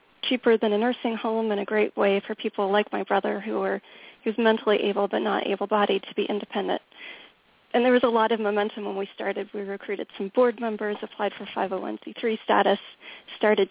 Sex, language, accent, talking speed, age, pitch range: female, English, American, 195 wpm, 30-49, 205-225 Hz